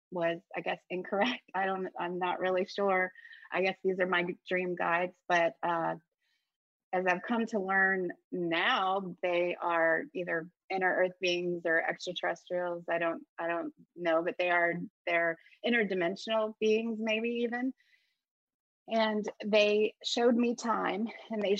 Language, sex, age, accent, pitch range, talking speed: English, female, 30-49, American, 180-225 Hz, 145 wpm